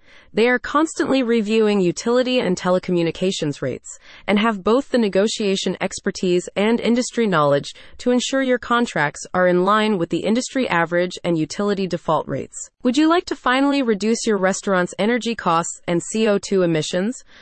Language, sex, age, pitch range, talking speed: English, female, 30-49, 175-230 Hz, 155 wpm